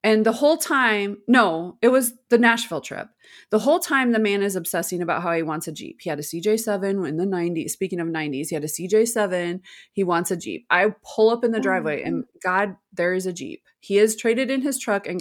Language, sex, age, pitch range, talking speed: English, female, 20-39, 185-240 Hz, 235 wpm